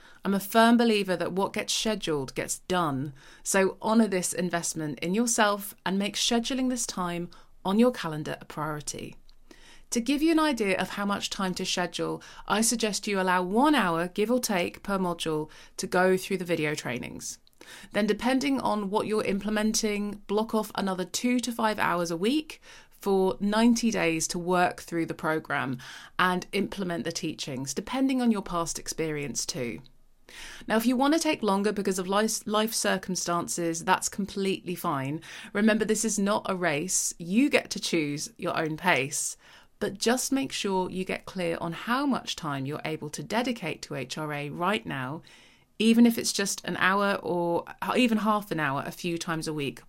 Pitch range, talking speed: 165-220 Hz, 180 wpm